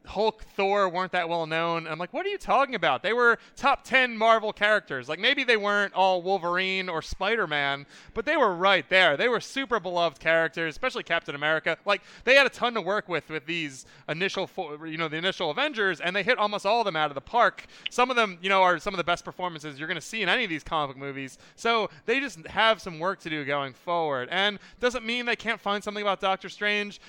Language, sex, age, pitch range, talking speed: English, male, 20-39, 165-215 Hz, 240 wpm